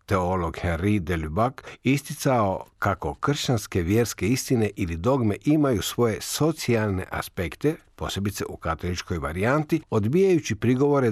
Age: 60-79